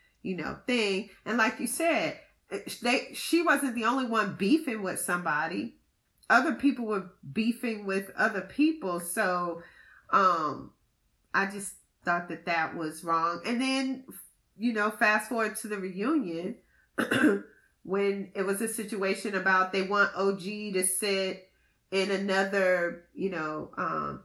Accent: American